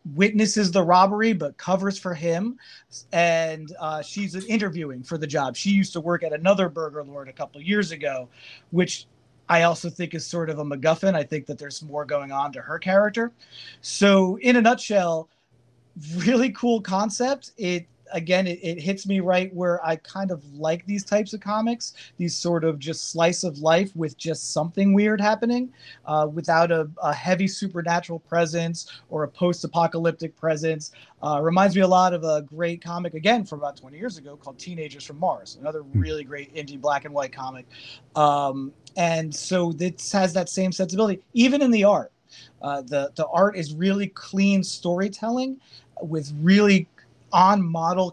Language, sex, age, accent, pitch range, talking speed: English, male, 30-49, American, 150-190 Hz, 175 wpm